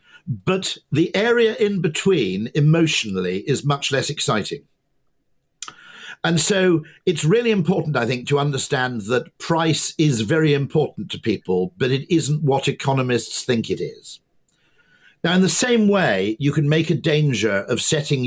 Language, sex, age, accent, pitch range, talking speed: English, male, 50-69, British, 125-175 Hz, 150 wpm